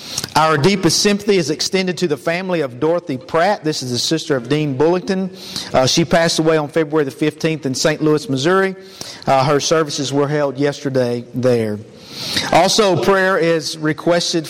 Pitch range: 140-175 Hz